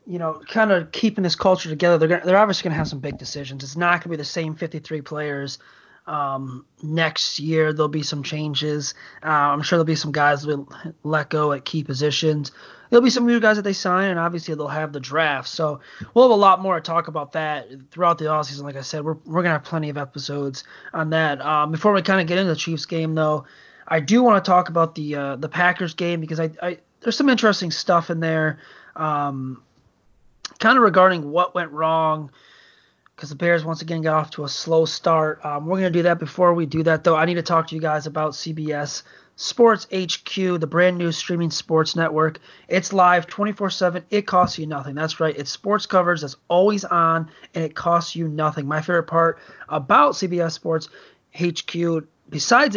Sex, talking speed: male, 220 wpm